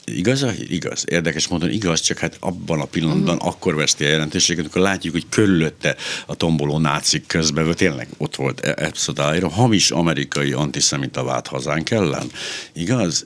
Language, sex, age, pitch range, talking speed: Hungarian, male, 60-79, 75-95 Hz, 155 wpm